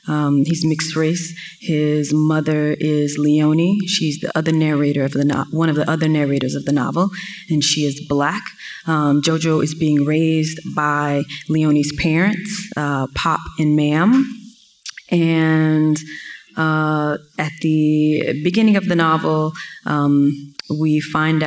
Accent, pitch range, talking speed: American, 145-165 Hz, 140 wpm